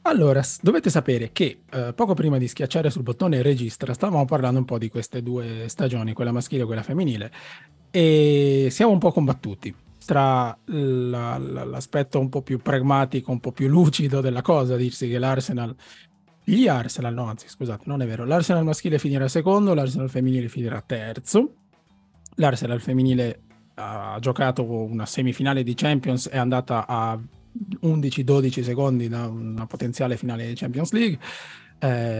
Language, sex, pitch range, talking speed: Italian, male, 120-145 Hz, 155 wpm